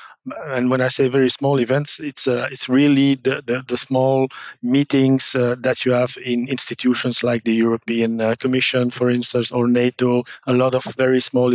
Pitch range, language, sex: 125-145 Hz, English, male